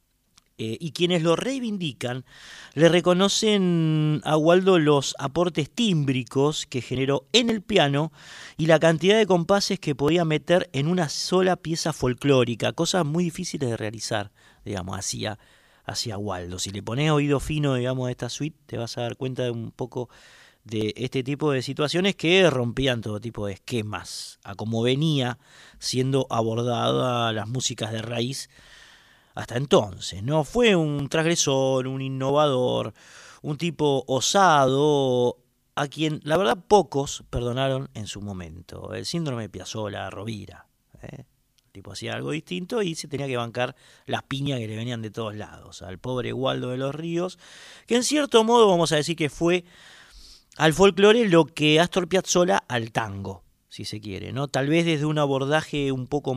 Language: Spanish